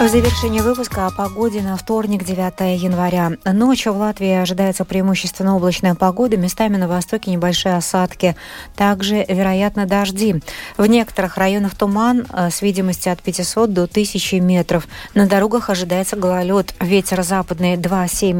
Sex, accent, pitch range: female, native, 175-210 Hz